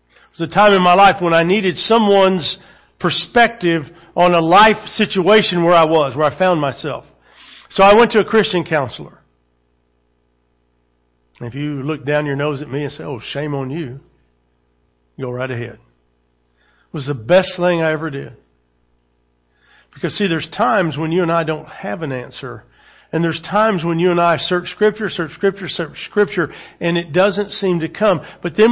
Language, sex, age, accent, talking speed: English, male, 50-69, American, 185 wpm